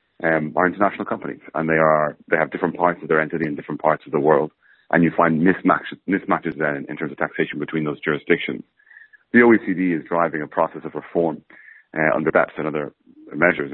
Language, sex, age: English, male, 30-49